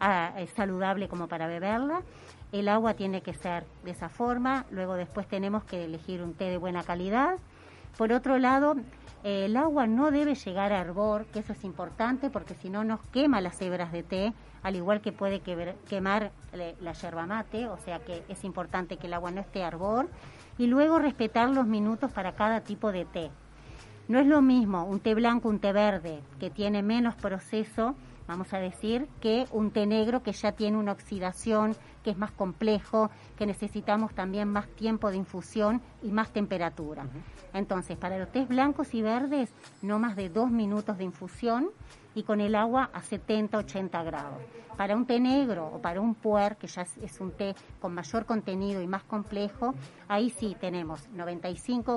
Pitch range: 185-225 Hz